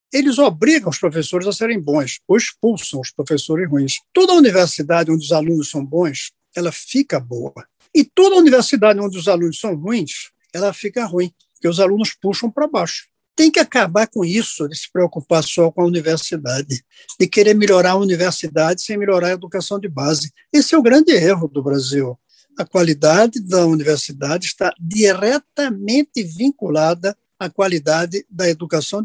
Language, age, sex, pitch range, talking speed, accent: Portuguese, 60-79, male, 155-235 Hz, 165 wpm, Brazilian